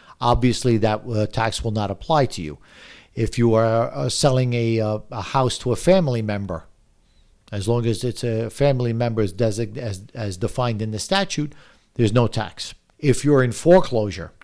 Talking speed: 180 wpm